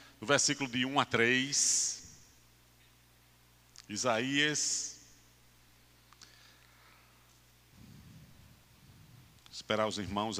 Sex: male